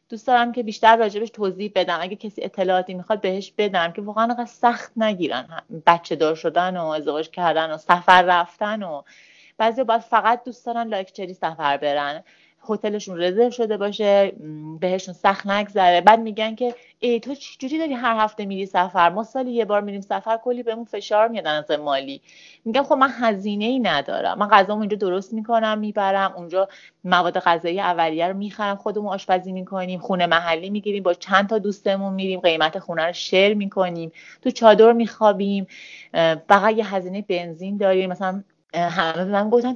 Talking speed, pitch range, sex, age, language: 170 wpm, 175-225 Hz, female, 30-49, Persian